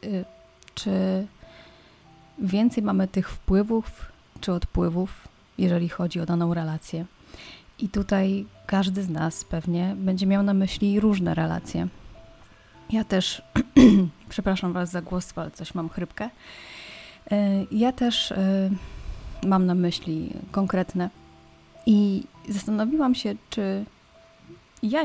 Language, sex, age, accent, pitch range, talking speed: Polish, female, 30-49, native, 175-205 Hz, 110 wpm